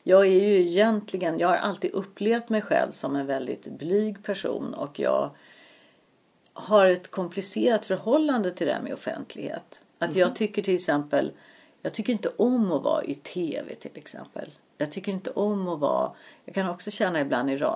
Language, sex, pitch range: Swedish, female, 175-225 Hz